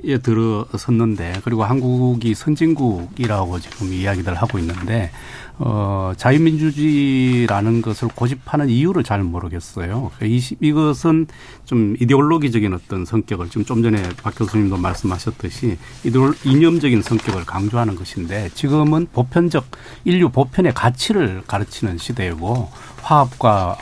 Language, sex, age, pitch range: Korean, male, 40-59, 100-130 Hz